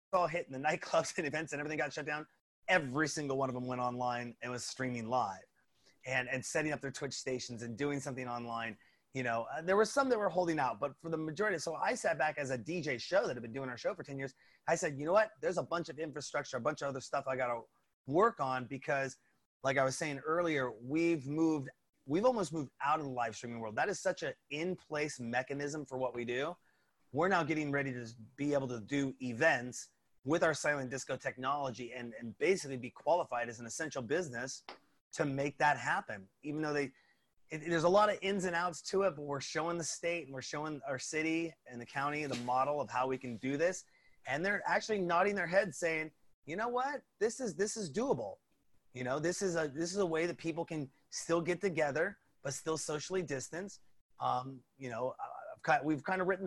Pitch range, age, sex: 130-165 Hz, 30-49, male